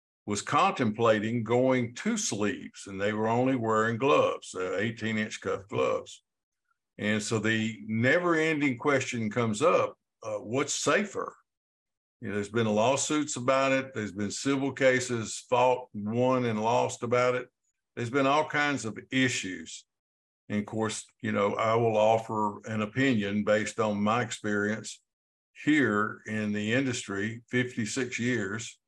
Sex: male